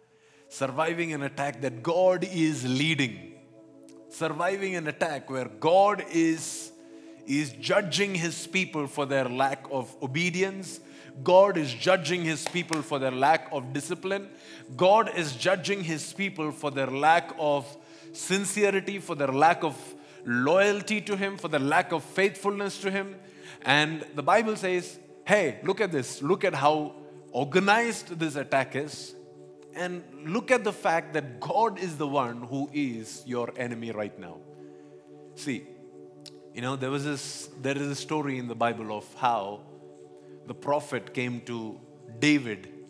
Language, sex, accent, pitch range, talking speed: English, male, Indian, 115-170 Hz, 150 wpm